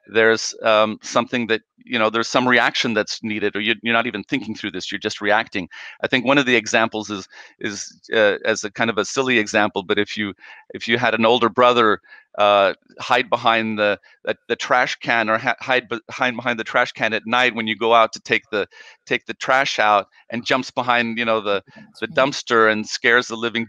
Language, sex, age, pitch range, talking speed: English, male, 40-59, 110-125 Hz, 225 wpm